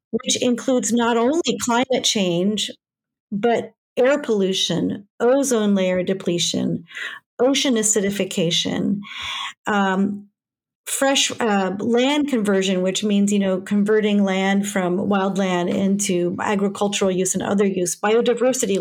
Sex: female